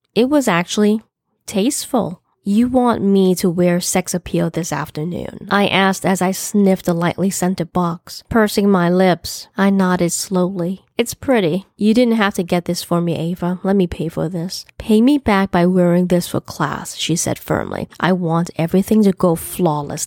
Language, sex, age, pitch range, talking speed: English, female, 20-39, 165-195 Hz, 180 wpm